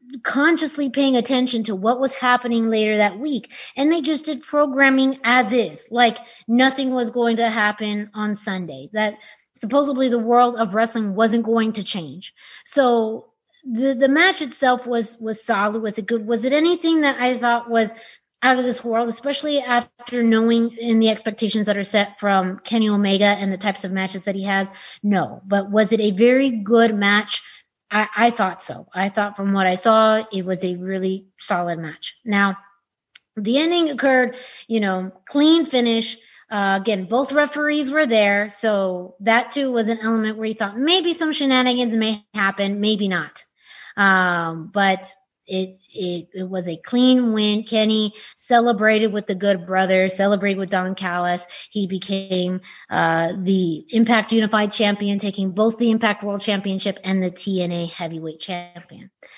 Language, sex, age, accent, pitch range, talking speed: English, female, 20-39, American, 200-250 Hz, 170 wpm